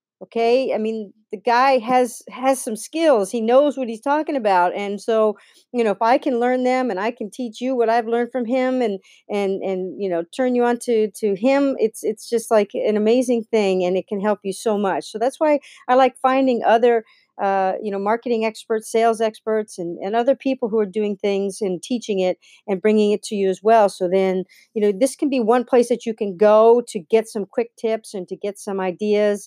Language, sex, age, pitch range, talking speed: English, female, 50-69, 190-235 Hz, 230 wpm